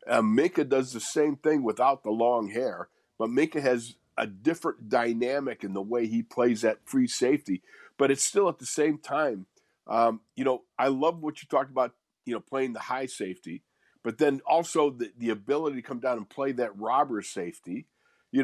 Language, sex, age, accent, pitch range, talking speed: English, male, 50-69, American, 115-155 Hz, 200 wpm